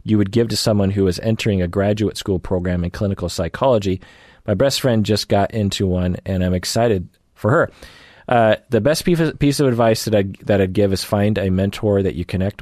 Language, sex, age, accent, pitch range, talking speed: English, male, 30-49, American, 90-110 Hz, 215 wpm